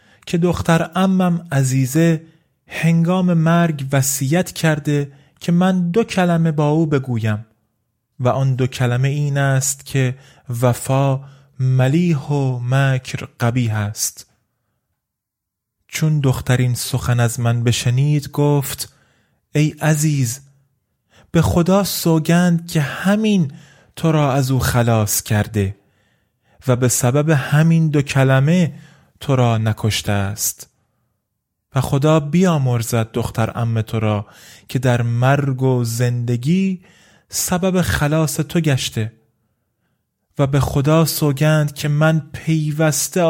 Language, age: Persian, 30-49